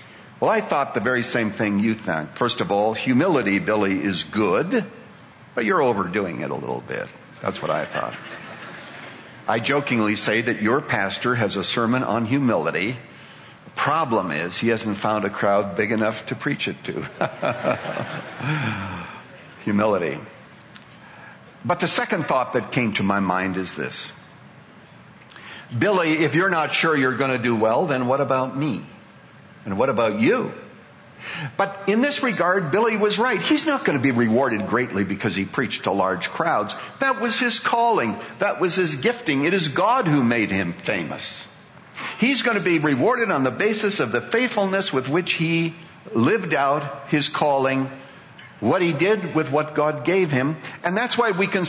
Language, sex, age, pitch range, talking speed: English, male, 60-79, 120-190 Hz, 170 wpm